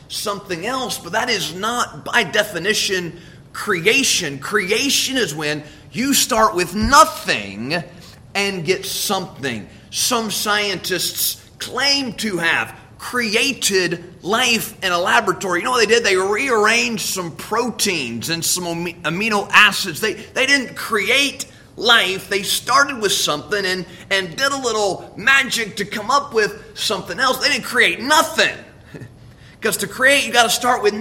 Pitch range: 165-225 Hz